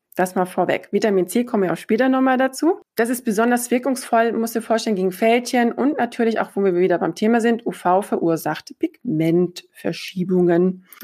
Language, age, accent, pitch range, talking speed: German, 20-39, German, 195-230 Hz, 180 wpm